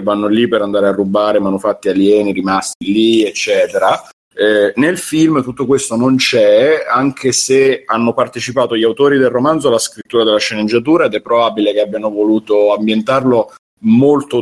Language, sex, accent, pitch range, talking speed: Italian, male, native, 110-135 Hz, 160 wpm